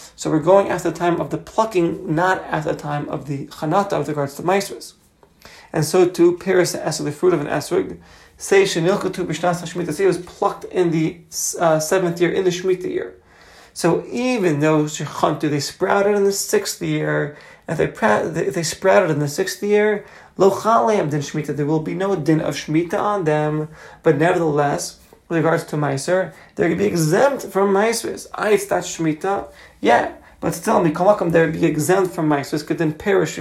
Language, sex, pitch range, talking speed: English, male, 155-190 Hz, 190 wpm